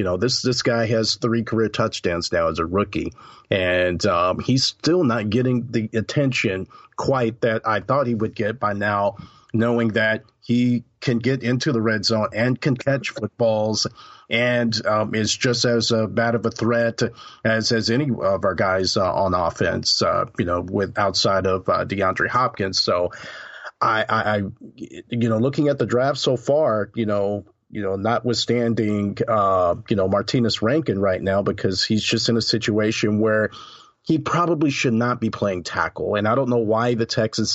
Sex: male